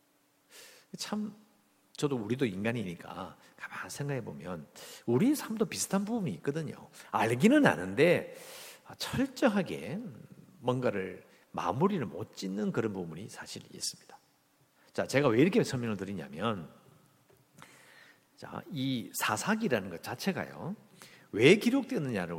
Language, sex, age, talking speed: English, male, 50-69, 95 wpm